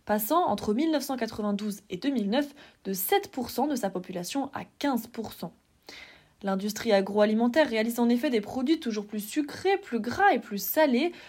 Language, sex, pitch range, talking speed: French, female, 205-285 Hz, 140 wpm